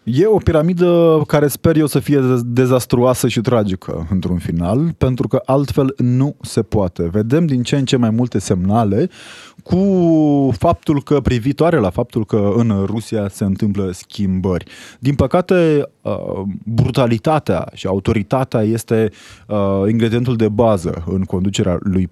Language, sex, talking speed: Romanian, male, 140 wpm